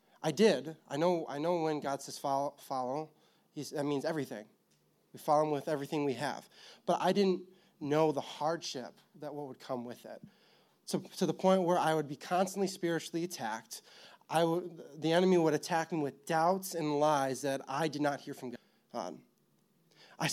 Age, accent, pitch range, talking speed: 20-39, American, 140-180 Hz, 185 wpm